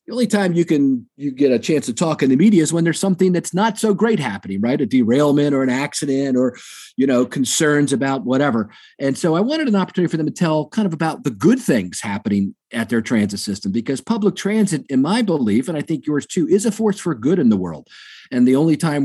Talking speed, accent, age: 250 wpm, American, 40-59